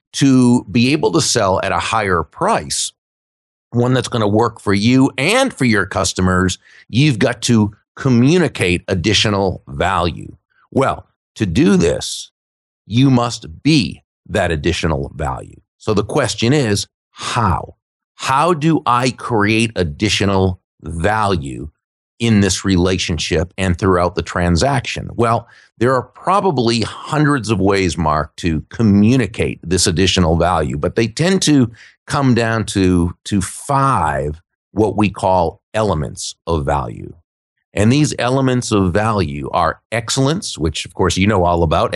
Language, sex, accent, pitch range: English, male, American, 90-120 Hz